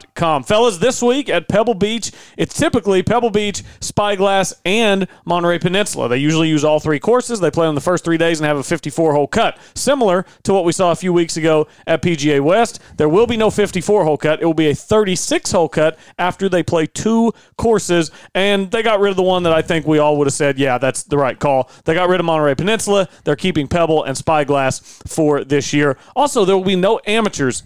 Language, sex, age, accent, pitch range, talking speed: English, male, 40-59, American, 150-190 Hz, 220 wpm